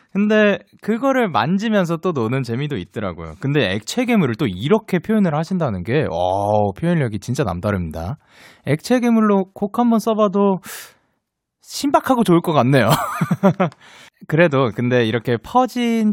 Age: 20-39